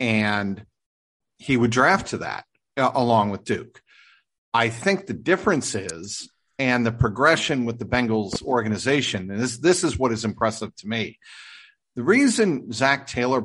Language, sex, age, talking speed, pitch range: English, male, 50-69, 155 wpm, 110-130 Hz